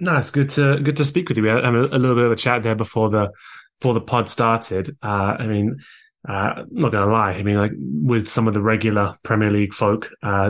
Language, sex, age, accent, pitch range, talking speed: English, male, 20-39, British, 105-120 Hz, 270 wpm